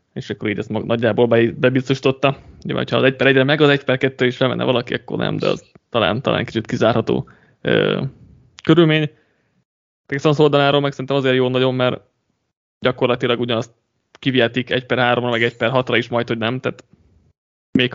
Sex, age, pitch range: male, 20-39, 120-140 Hz